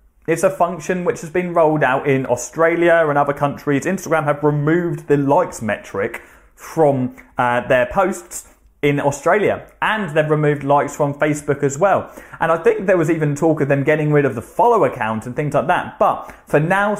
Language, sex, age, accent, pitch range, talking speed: English, male, 20-39, British, 130-165 Hz, 195 wpm